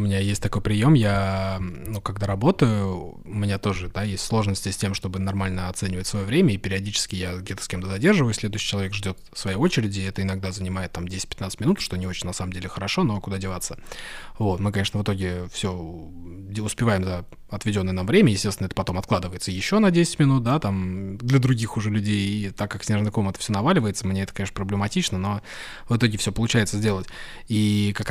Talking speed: 205 wpm